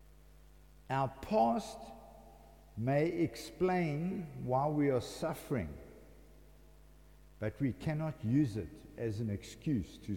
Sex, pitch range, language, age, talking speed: male, 110-160 Hz, English, 60-79, 100 wpm